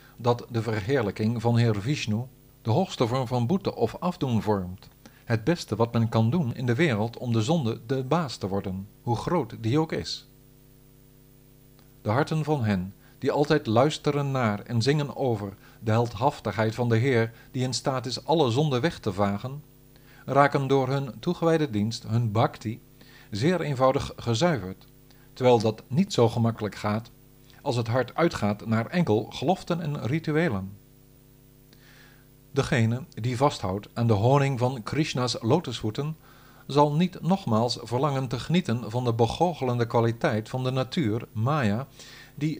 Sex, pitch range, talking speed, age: male, 115-140 Hz, 155 wpm, 50-69